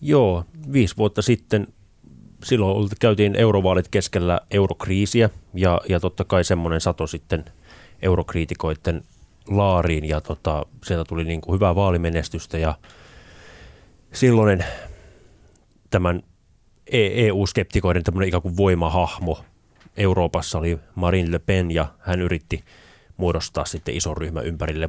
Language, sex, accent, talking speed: Finnish, male, native, 115 wpm